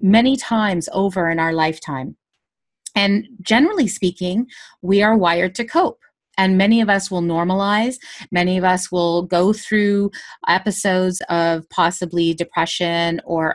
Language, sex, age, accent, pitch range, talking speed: English, female, 30-49, American, 170-210 Hz, 135 wpm